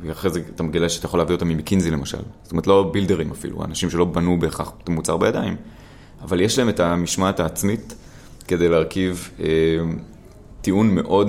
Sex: male